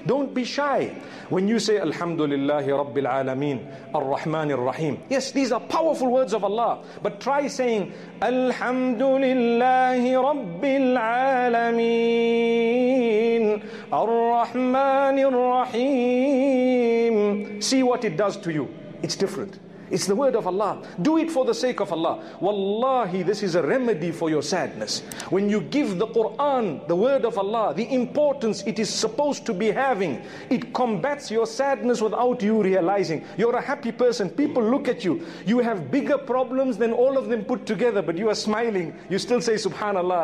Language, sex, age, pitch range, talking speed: English, male, 40-59, 200-255 Hz, 150 wpm